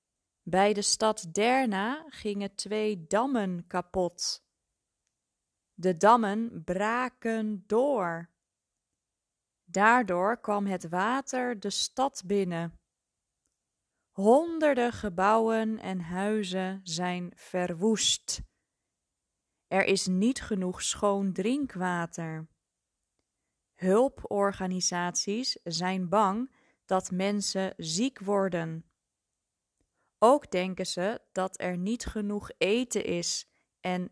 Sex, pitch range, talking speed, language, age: female, 185-225 Hz, 85 wpm, Dutch, 20-39